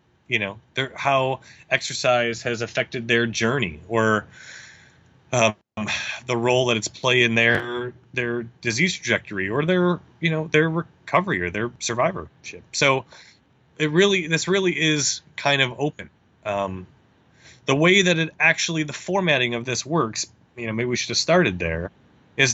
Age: 30-49